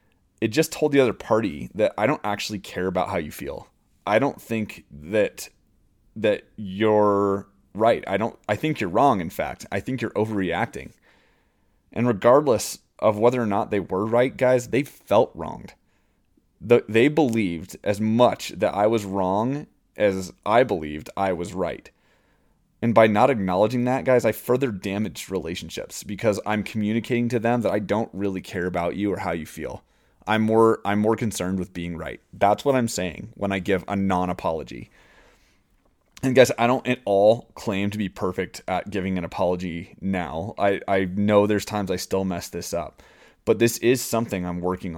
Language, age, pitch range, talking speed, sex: English, 30-49, 95-115 Hz, 180 wpm, male